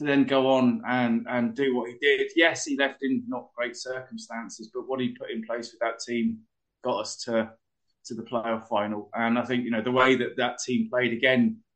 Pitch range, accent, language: 120-135 Hz, British, English